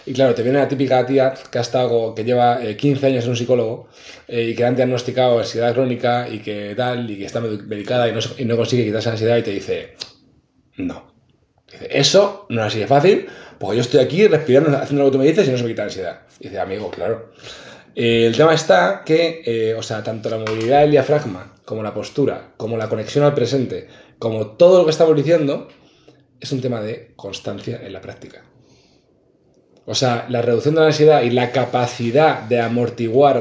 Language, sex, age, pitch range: Spanish, male, 20-39, 115-145 Hz